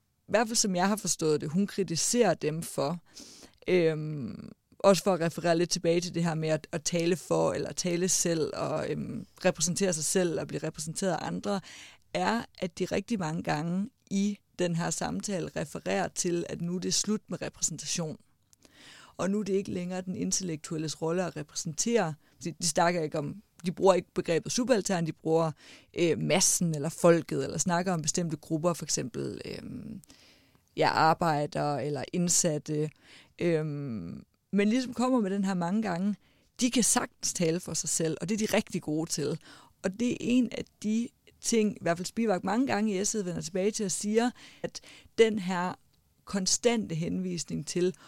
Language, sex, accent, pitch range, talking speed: Danish, female, native, 160-200 Hz, 180 wpm